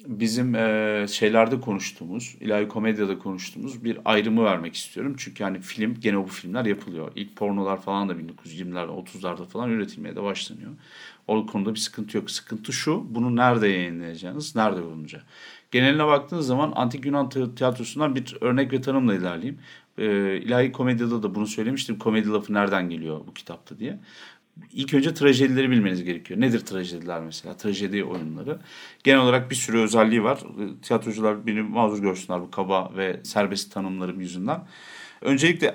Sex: male